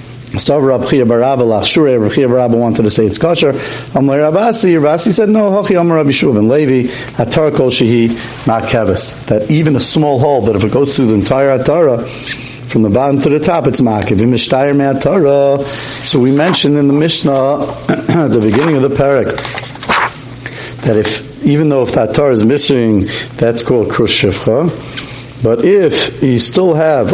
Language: English